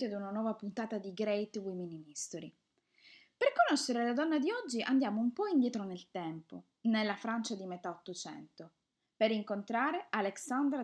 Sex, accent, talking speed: female, native, 160 wpm